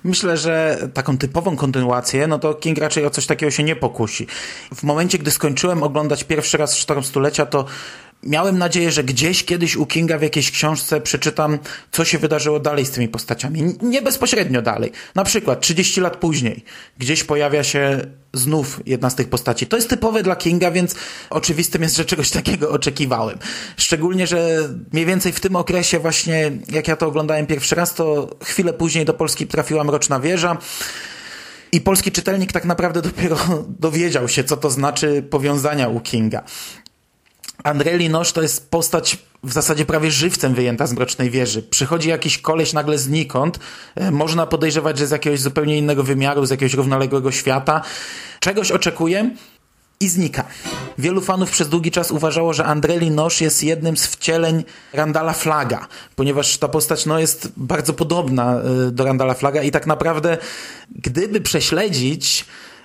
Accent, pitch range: native, 145-170 Hz